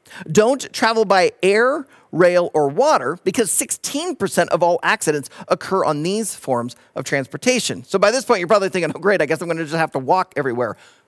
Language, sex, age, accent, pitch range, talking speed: English, male, 40-59, American, 175-250 Hz, 200 wpm